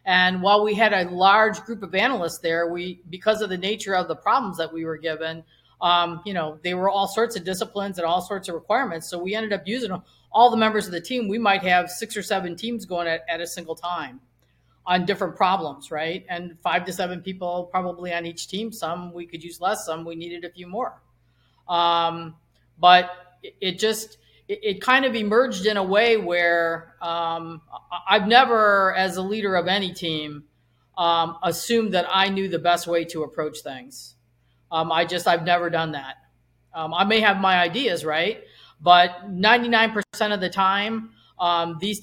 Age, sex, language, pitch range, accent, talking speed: 40-59, female, English, 165-200 Hz, American, 195 wpm